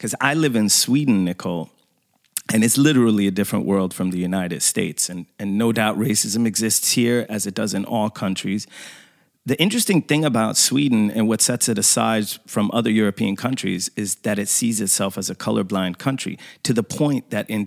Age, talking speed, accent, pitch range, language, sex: 30-49, 195 wpm, American, 100-125 Hz, English, male